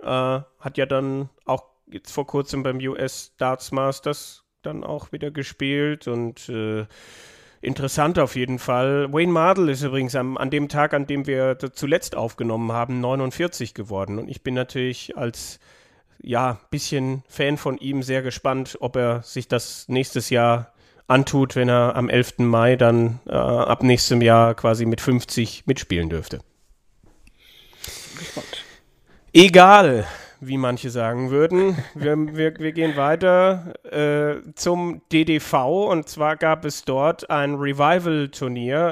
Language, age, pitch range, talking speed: German, 30-49, 125-145 Hz, 140 wpm